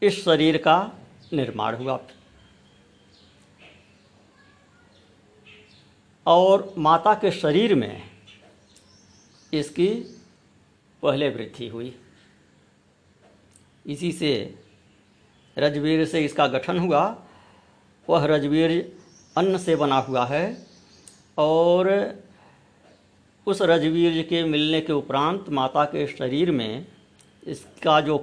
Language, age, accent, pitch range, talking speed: Hindi, 60-79, native, 105-160 Hz, 85 wpm